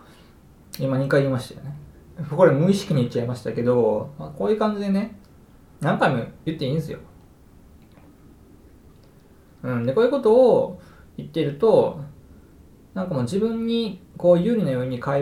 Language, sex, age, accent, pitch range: Japanese, male, 20-39, native, 125-185 Hz